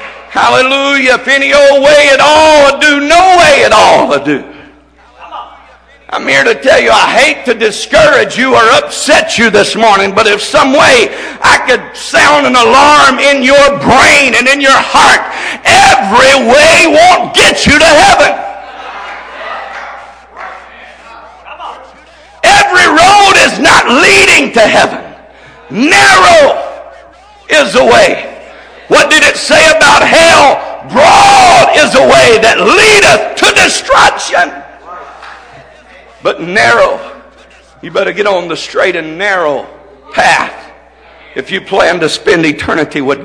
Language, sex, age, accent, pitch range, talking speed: English, male, 60-79, American, 225-305 Hz, 135 wpm